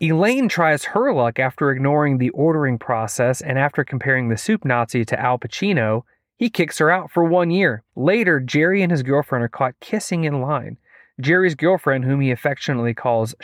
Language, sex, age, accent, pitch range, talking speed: English, male, 30-49, American, 125-175 Hz, 185 wpm